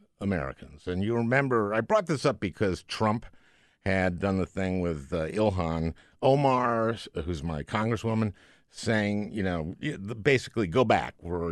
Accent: American